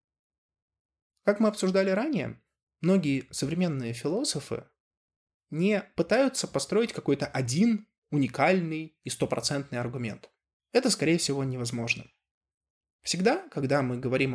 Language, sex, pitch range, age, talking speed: Russian, male, 120-180 Hz, 20-39, 100 wpm